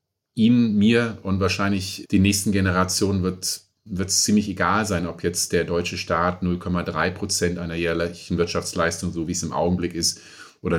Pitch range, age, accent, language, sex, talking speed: 85-95 Hz, 30-49, German, German, male, 160 wpm